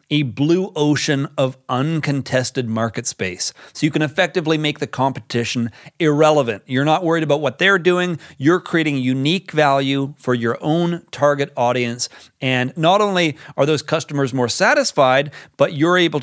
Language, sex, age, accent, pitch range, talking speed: English, male, 40-59, American, 130-170 Hz, 155 wpm